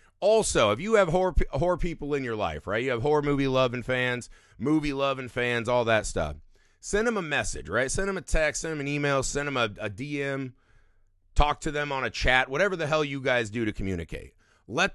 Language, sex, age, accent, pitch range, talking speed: English, male, 30-49, American, 105-155 Hz, 215 wpm